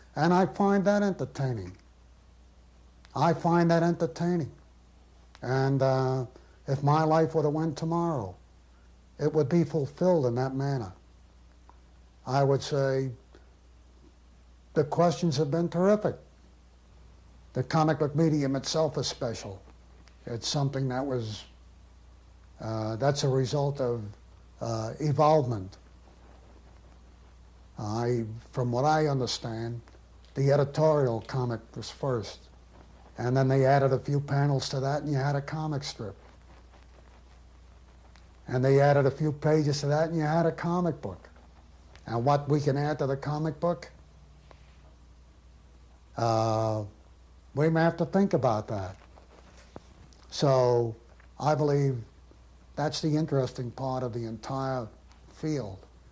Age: 60-79